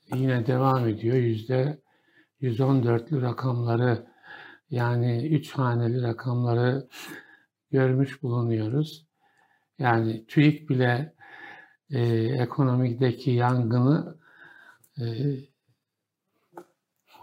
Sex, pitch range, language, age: male, 125-150 Hz, Turkish, 60-79